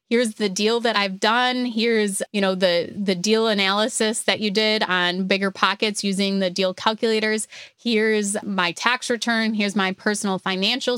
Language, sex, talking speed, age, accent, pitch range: English, female, 170 wpm, 20-39, American, 190-215 Hz